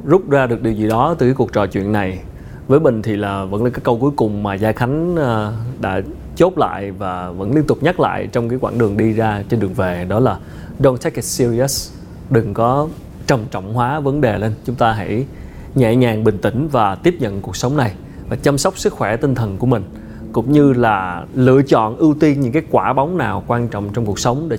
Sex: male